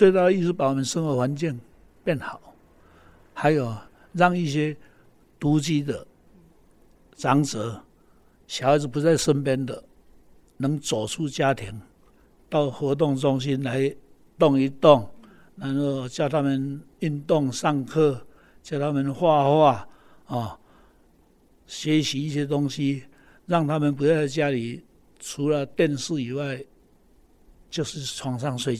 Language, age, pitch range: Chinese, 60-79, 125-150 Hz